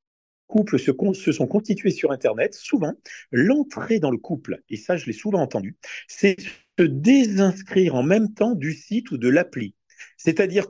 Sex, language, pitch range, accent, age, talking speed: male, French, 135-210 Hz, French, 40-59, 170 wpm